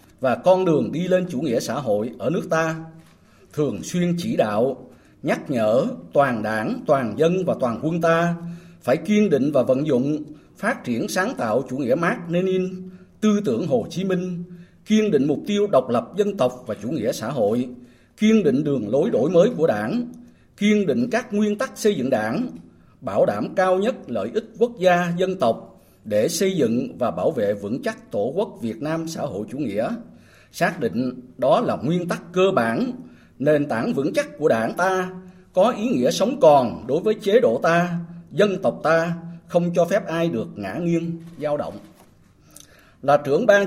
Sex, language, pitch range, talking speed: male, Vietnamese, 155-205 Hz, 190 wpm